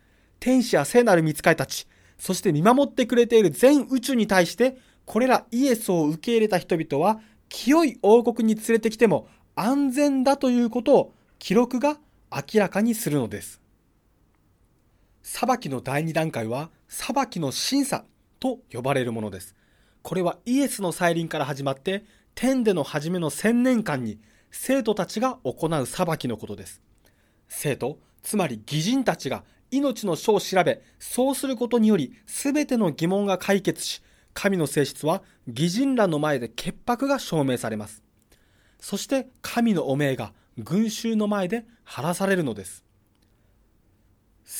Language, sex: Japanese, male